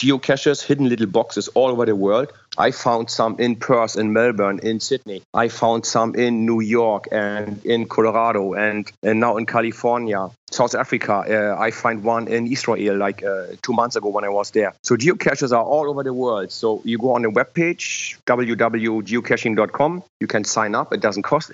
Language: English